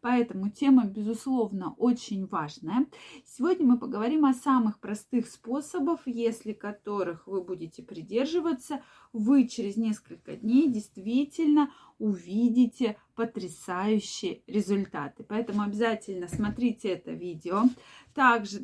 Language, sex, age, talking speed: Russian, female, 20-39, 100 wpm